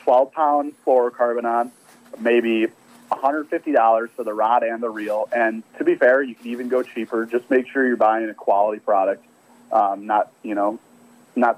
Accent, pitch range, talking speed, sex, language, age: American, 110-135 Hz, 170 wpm, male, English, 30-49